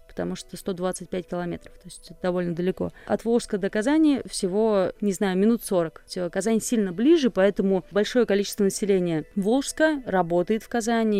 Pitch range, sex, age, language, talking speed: 180-205 Hz, female, 20-39, Russian, 150 wpm